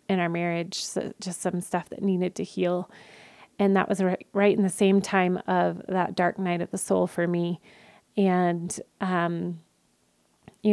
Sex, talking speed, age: female, 170 wpm, 30-49